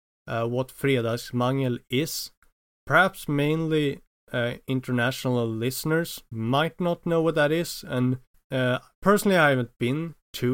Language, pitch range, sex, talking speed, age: English, 115-140 Hz, male, 125 wpm, 30-49